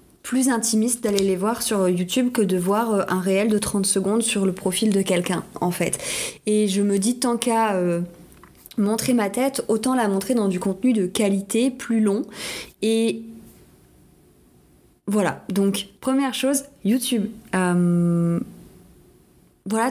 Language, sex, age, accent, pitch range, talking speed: French, female, 20-39, French, 200-240 Hz, 145 wpm